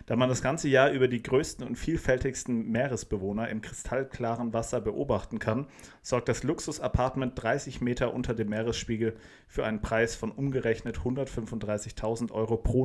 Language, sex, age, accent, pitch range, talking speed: German, male, 40-59, German, 110-130 Hz, 150 wpm